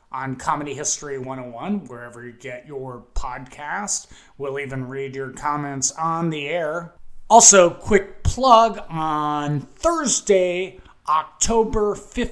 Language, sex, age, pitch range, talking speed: English, male, 30-49, 145-200 Hz, 110 wpm